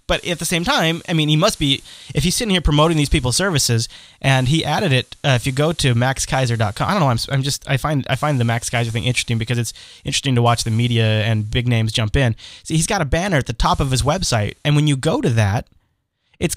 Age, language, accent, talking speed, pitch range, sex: 30-49, English, American, 265 wpm, 120-155 Hz, male